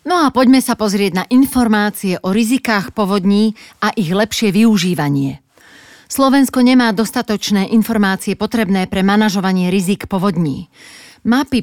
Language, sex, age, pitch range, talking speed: Slovak, female, 40-59, 195-235 Hz, 125 wpm